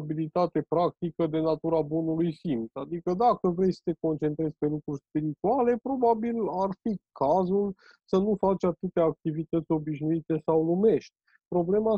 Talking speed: 140 wpm